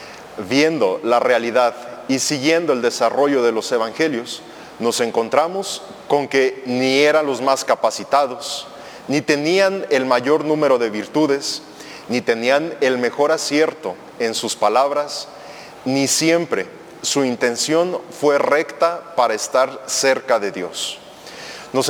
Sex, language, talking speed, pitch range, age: male, Spanish, 125 wpm, 130-160 Hz, 30-49